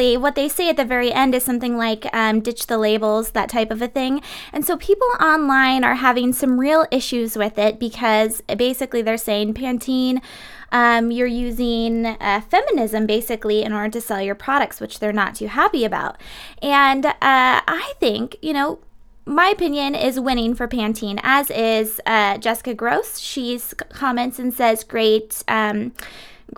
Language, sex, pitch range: English, female, 220-270 Hz